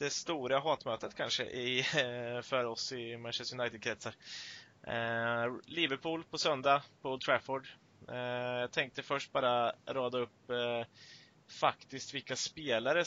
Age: 20-39